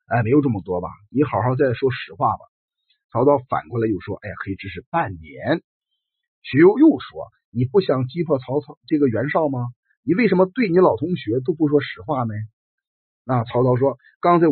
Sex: male